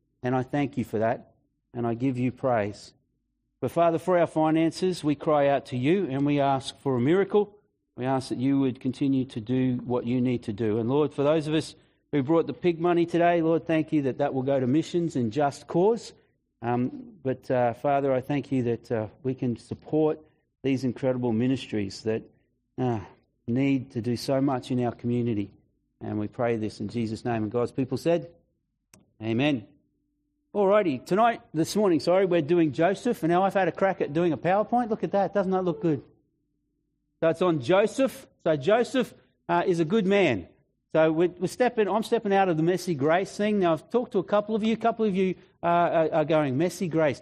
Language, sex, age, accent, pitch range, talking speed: English, male, 40-59, Australian, 130-185 Hz, 210 wpm